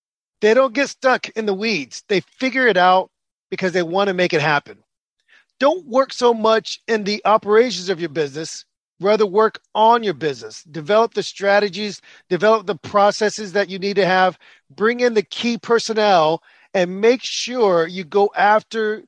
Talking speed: 175 wpm